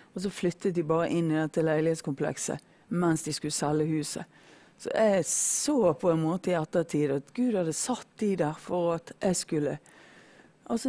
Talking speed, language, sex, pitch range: 160 wpm, English, female, 160-185 Hz